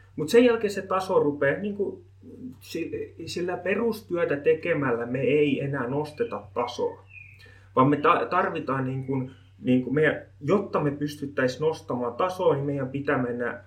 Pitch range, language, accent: 115-150 Hz, Finnish, native